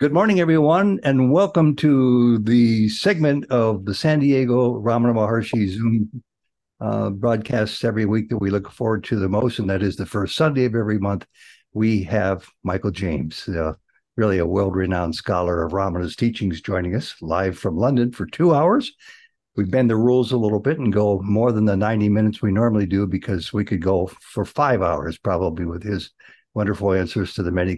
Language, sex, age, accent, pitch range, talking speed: English, male, 60-79, American, 95-125 Hz, 190 wpm